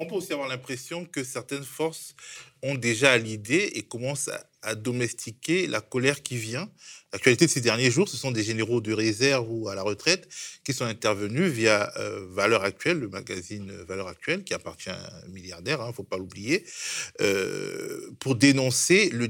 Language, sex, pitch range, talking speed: French, male, 110-145 Hz, 185 wpm